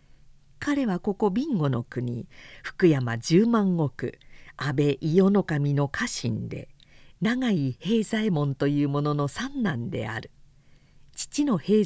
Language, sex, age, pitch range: Japanese, female, 50-69, 140-215 Hz